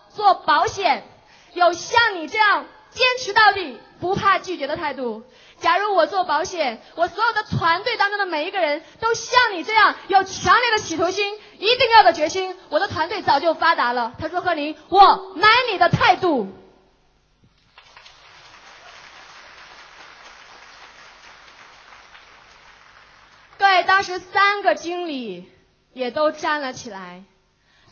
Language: Chinese